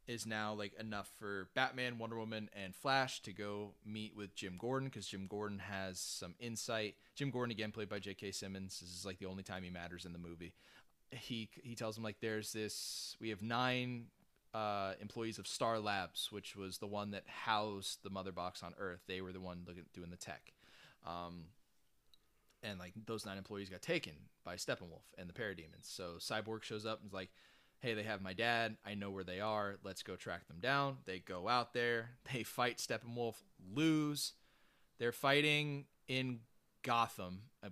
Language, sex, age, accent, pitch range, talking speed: English, male, 20-39, American, 95-115 Hz, 195 wpm